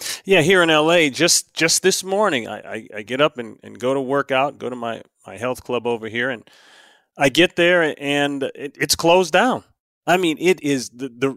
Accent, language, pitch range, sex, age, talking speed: American, English, 120-155 Hz, male, 30-49, 220 wpm